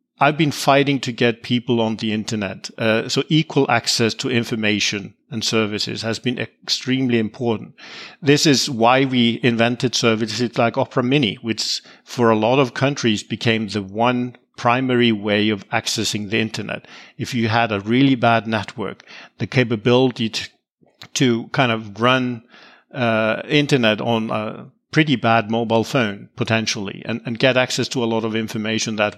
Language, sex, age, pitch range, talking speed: English, male, 50-69, 110-135 Hz, 160 wpm